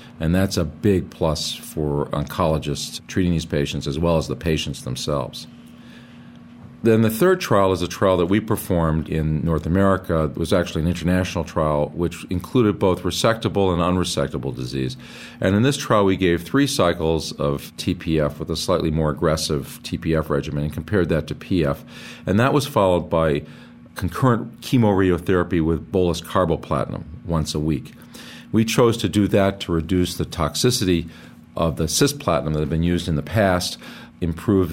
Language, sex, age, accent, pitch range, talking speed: English, male, 40-59, American, 80-95 Hz, 170 wpm